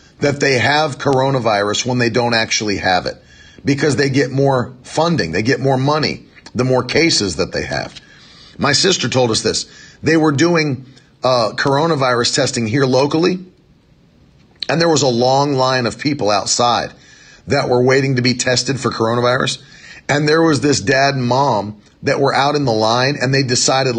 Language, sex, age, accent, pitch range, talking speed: English, male, 40-59, American, 120-160 Hz, 180 wpm